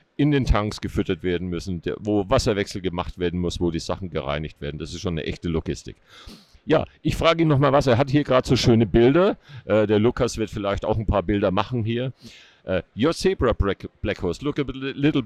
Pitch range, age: 95-130 Hz, 50-69